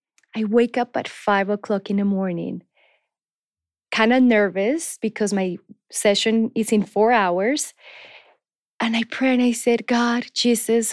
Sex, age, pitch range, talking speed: female, 20-39, 205-260 Hz, 150 wpm